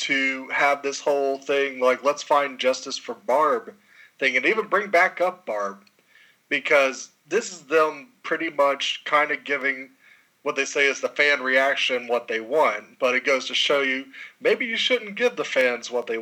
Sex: male